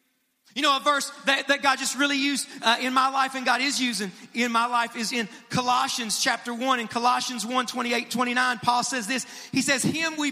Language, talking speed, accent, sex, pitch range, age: English, 220 wpm, American, male, 230-275 Hz, 40-59